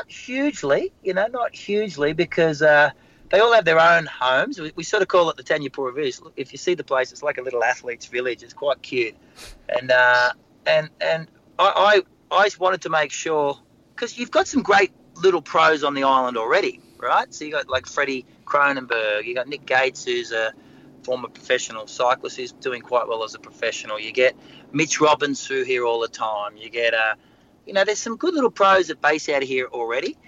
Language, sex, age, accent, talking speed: English, male, 30-49, Australian, 215 wpm